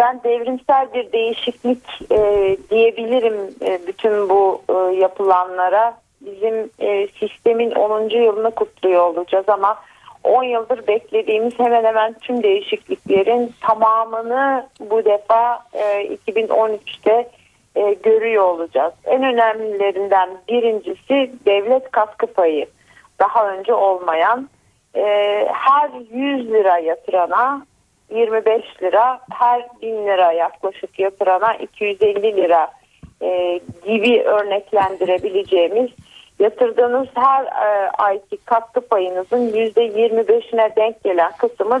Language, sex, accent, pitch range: Turkish, female, native, 200-245 Hz